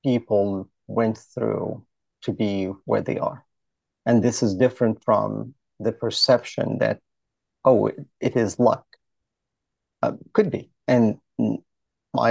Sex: male